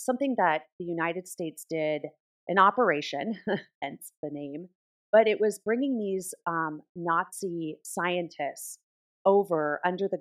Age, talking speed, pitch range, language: 30-49, 110 wpm, 145-175 Hz, English